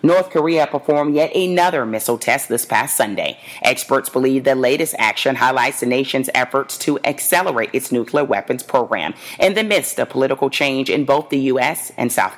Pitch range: 125-150 Hz